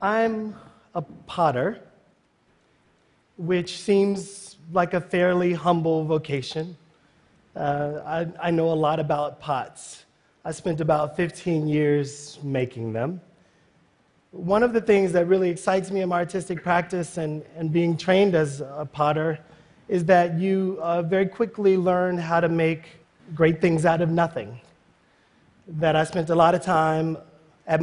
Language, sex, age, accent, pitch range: Chinese, male, 30-49, American, 145-175 Hz